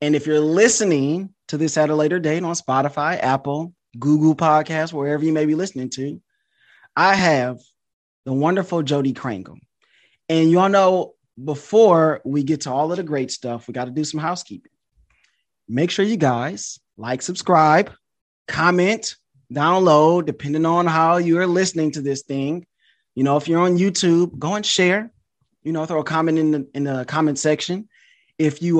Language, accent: English, American